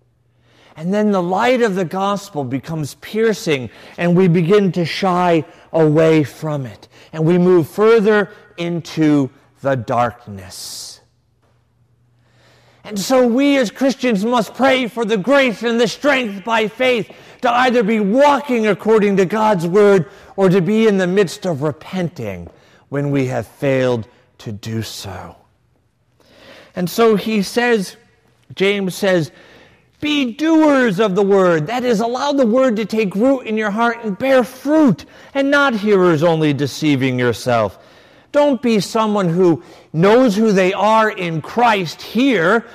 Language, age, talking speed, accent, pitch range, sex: English, 50-69, 145 wpm, American, 155-230 Hz, male